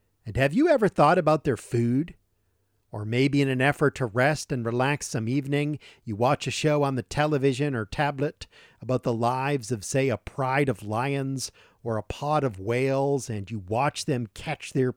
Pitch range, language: 110-150 Hz, English